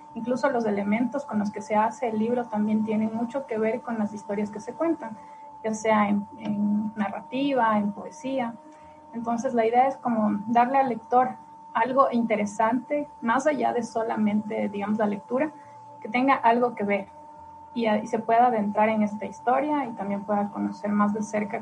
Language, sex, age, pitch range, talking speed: Spanish, female, 30-49, 215-250 Hz, 180 wpm